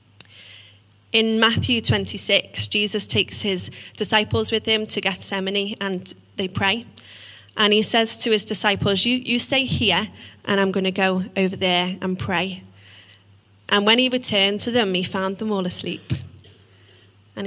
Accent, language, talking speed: British, English, 155 wpm